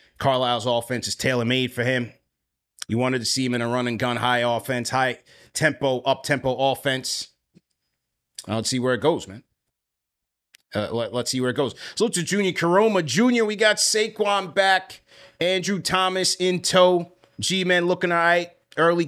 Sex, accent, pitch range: male, American, 125-170 Hz